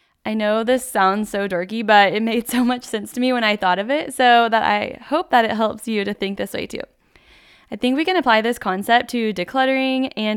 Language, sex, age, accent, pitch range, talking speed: English, female, 10-29, American, 195-245 Hz, 245 wpm